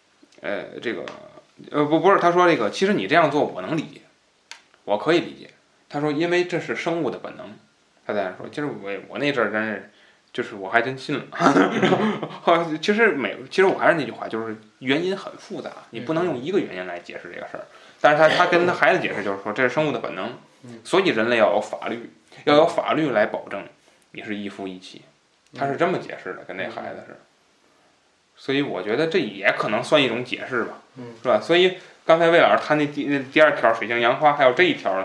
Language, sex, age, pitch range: Chinese, male, 20-39, 110-170 Hz